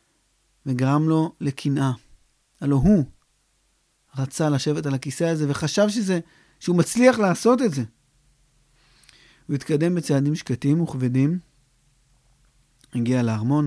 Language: Hebrew